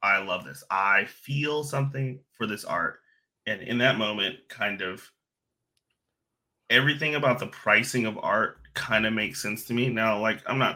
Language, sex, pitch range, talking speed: English, male, 110-140 Hz, 175 wpm